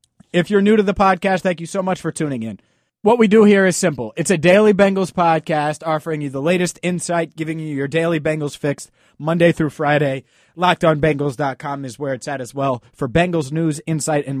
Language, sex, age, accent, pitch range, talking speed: English, male, 30-49, American, 135-170 Hz, 210 wpm